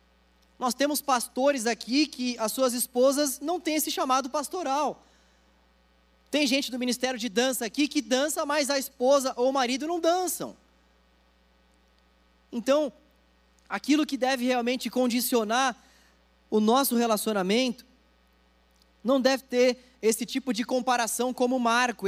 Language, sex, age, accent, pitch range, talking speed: Portuguese, male, 20-39, Brazilian, 200-255 Hz, 130 wpm